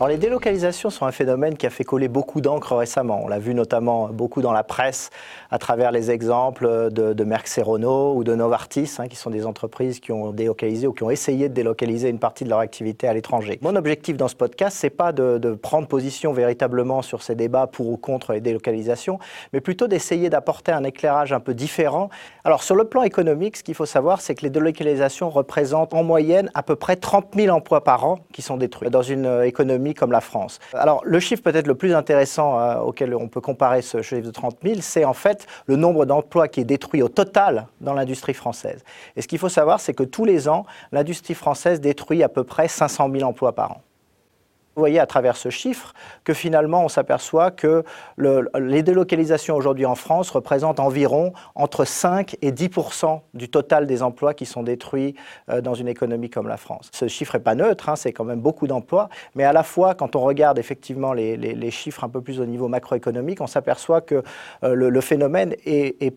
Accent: French